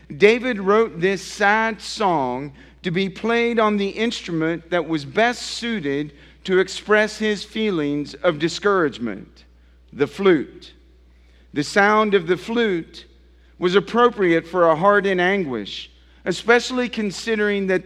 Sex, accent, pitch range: male, American, 145-210 Hz